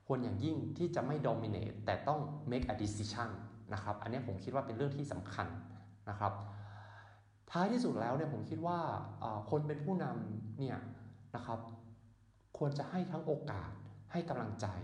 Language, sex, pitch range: Thai, male, 105-150 Hz